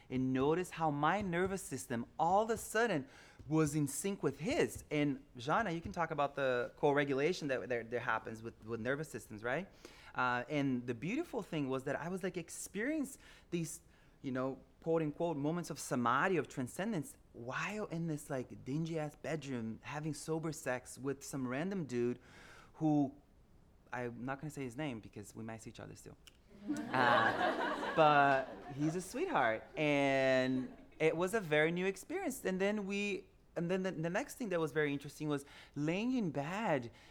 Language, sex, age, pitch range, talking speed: English, male, 20-39, 125-170 Hz, 180 wpm